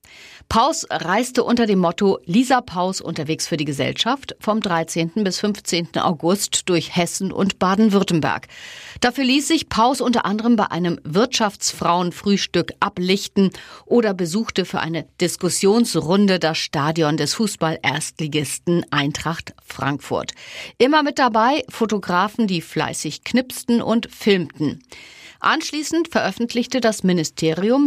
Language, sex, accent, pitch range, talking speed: German, female, German, 165-220 Hz, 115 wpm